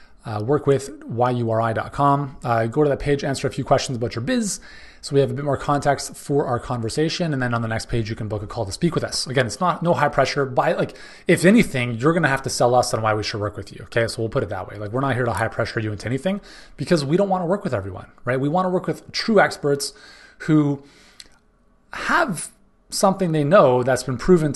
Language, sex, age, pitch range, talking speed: English, male, 30-49, 115-150 Hz, 250 wpm